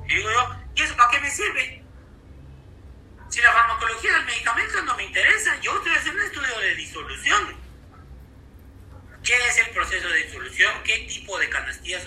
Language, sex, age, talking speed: Spanish, male, 40-59, 170 wpm